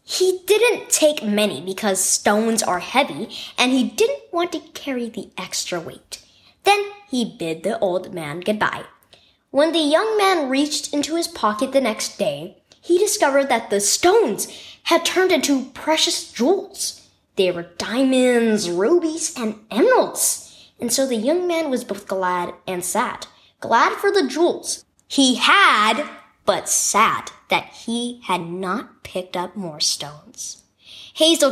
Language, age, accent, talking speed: English, 10-29, American, 150 wpm